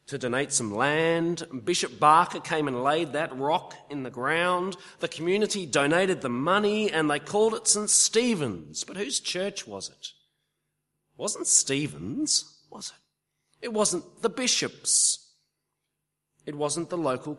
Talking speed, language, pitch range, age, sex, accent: 150 wpm, English, 135-195 Hz, 40-59, male, Australian